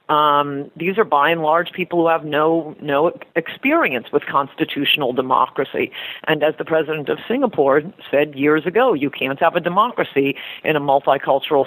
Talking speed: 165 wpm